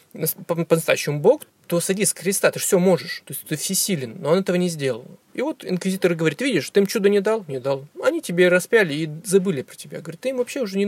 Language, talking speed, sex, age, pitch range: Russian, 235 wpm, male, 20-39, 150-195 Hz